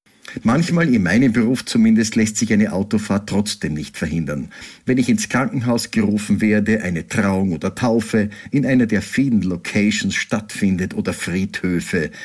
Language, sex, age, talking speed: German, male, 50-69, 145 wpm